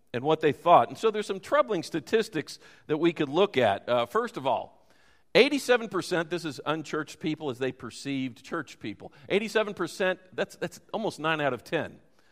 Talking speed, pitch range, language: 180 wpm, 150-200 Hz, English